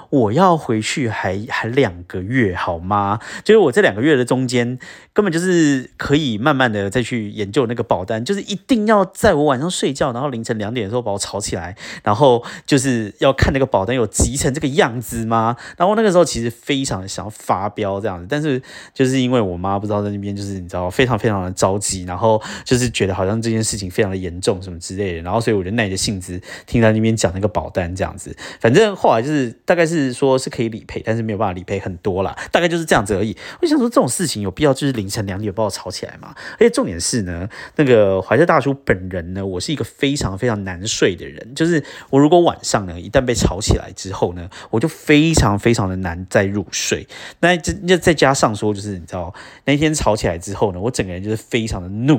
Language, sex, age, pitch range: Chinese, male, 30-49, 100-145 Hz